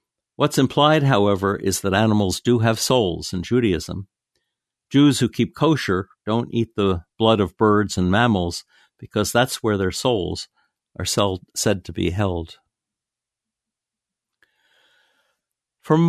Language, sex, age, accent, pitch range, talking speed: English, male, 60-79, American, 95-125 Hz, 125 wpm